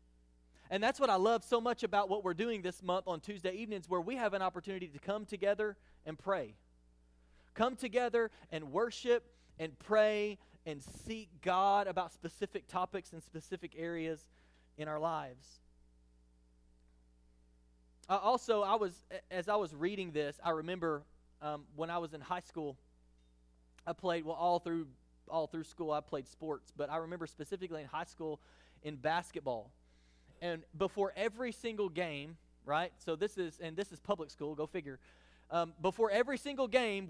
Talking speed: 165 wpm